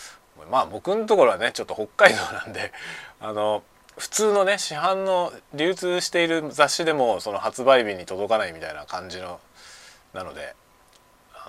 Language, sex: Japanese, male